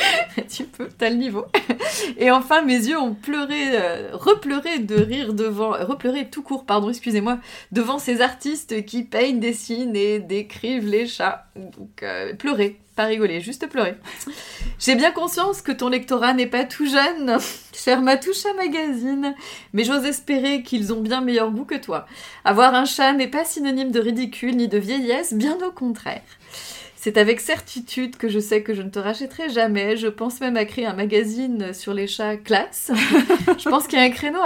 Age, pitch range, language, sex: 30-49, 230-305 Hz, French, female